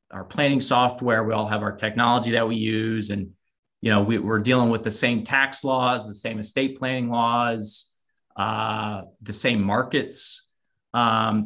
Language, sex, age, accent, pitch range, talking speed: English, male, 30-49, American, 105-120 Hz, 170 wpm